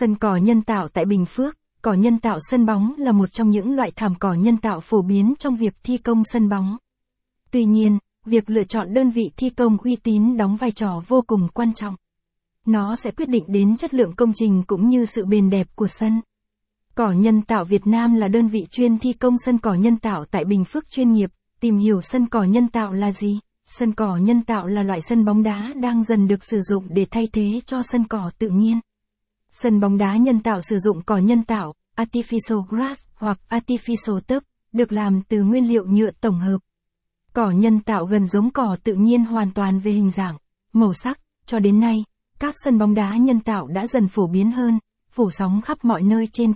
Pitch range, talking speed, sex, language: 200-235 Hz, 220 wpm, female, Vietnamese